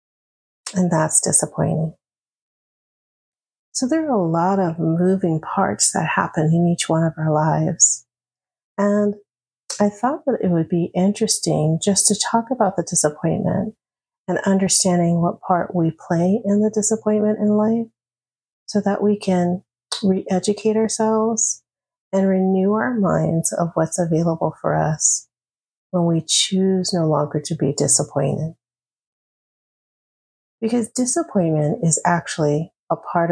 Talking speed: 130 wpm